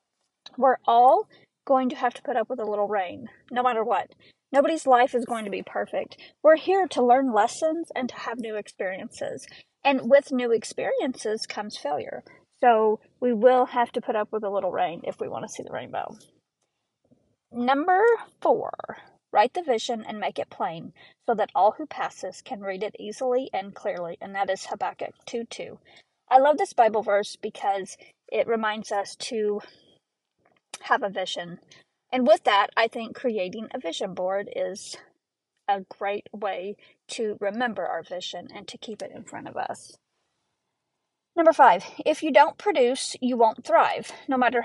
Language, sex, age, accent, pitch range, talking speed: English, female, 30-49, American, 215-270 Hz, 175 wpm